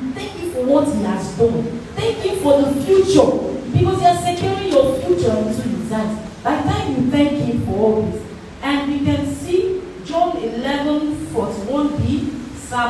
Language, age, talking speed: English, 40-59, 165 wpm